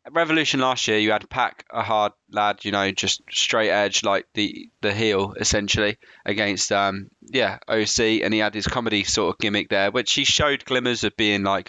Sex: male